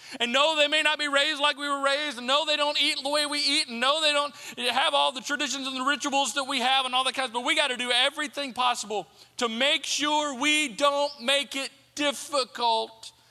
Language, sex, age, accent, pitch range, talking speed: English, male, 40-59, American, 225-285 Hz, 235 wpm